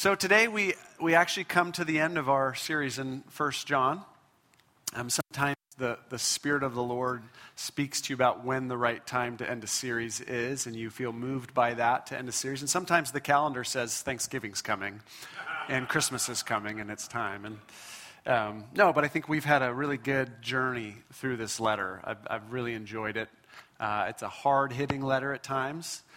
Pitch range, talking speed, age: 120-155 Hz, 200 wpm, 40-59